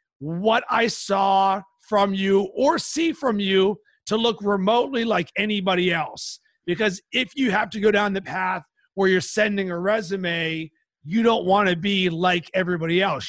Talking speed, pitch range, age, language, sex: 165 wpm, 175-215 Hz, 40-59, English, male